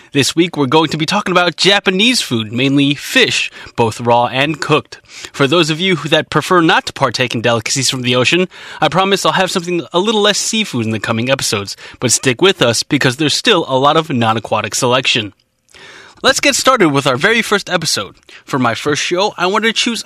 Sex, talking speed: male, 215 wpm